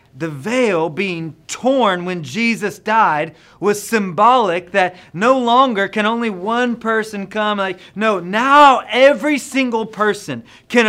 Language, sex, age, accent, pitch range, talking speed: English, male, 30-49, American, 130-185 Hz, 130 wpm